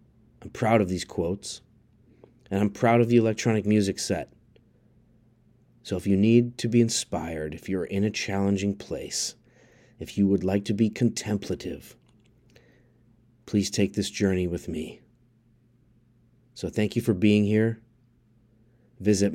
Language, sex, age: English, male, 30-49